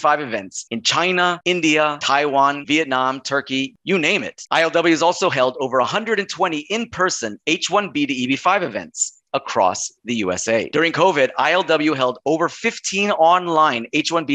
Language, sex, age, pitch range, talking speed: English, male, 30-49, 130-180 Hz, 140 wpm